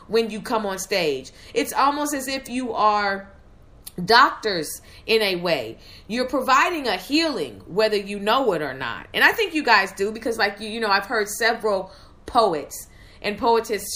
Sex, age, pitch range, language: female, 40-59, 180-235 Hz, English